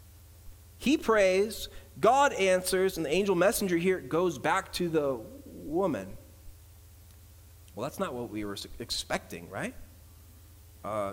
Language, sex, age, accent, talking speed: English, male, 30-49, American, 125 wpm